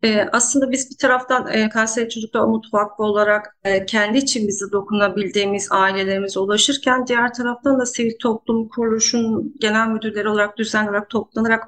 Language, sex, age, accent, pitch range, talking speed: Turkish, female, 40-59, native, 200-225 Hz, 130 wpm